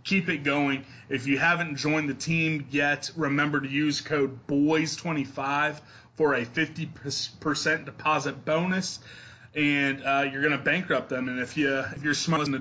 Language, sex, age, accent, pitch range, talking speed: English, male, 20-39, American, 140-160 Hz, 160 wpm